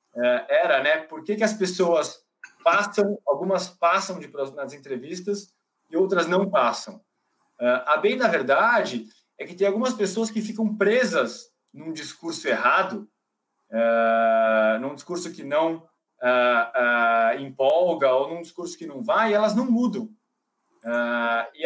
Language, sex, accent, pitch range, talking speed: Portuguese, male, Brazilian, 135-215 Hz, 135 wpm